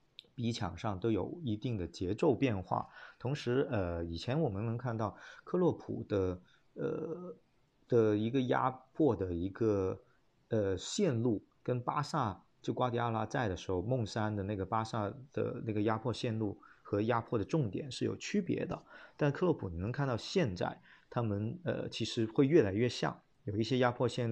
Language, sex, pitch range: Chinese, male, 100-125 Hz